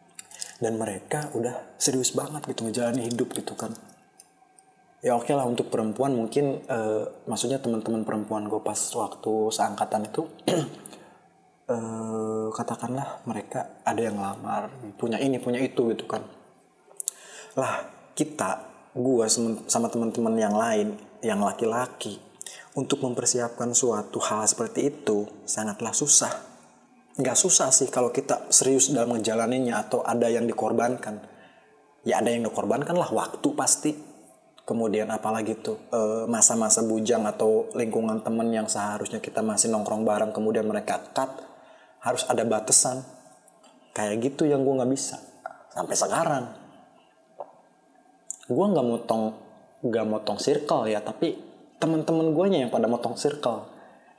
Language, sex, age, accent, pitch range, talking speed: Indonesian, male, 20-39, native, 110-130 Hz, 125 wpm